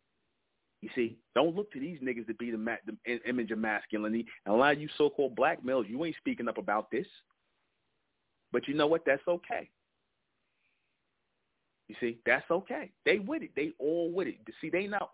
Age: 30-49